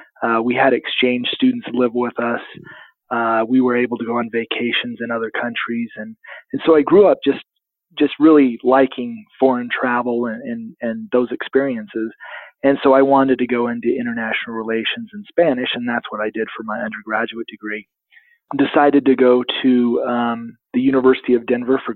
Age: 30-49